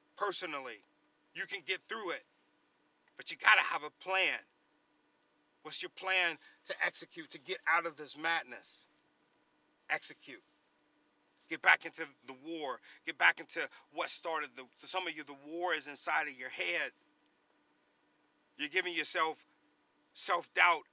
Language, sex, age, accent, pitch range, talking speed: English, male, 40-59, American, 145-170 Hz, 145 wpm